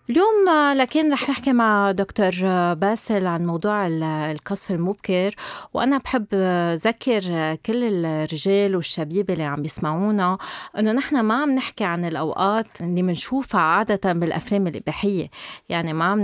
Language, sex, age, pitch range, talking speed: Arabic, female, 30-49, 170-225 Hz, 130 wpm